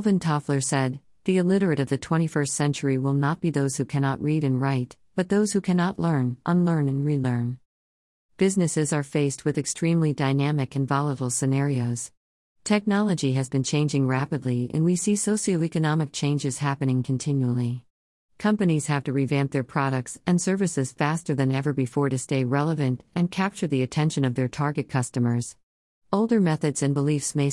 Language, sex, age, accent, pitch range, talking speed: English, female, 50-69, American, 130-160 Hz, 165 wpm